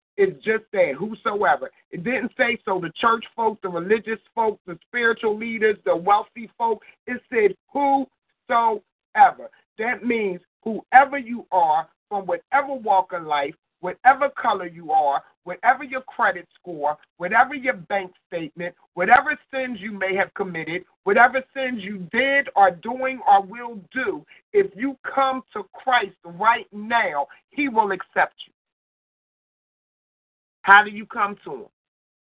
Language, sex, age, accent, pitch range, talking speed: English, male, 50-69, American, 175-235 Hz, 145 wpm